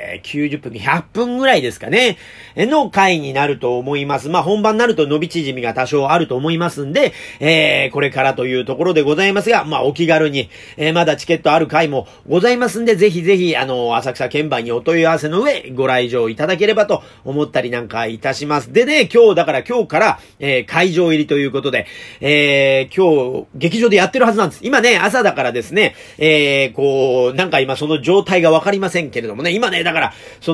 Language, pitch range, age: Japanese, 140-210 Hz, 40-59